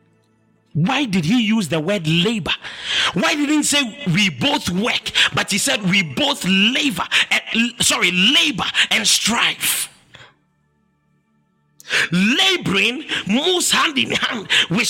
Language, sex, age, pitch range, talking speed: English, male, 50-69, 220-320 Hz, 120 wpm